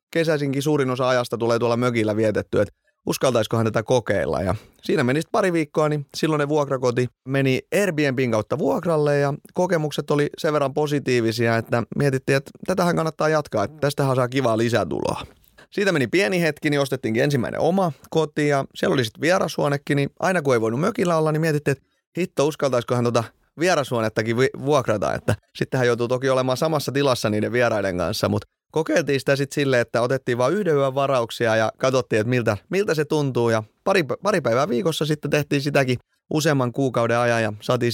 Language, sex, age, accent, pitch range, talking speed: Finnish, male, 30-49, native, 115-150 Hz, 180 wpm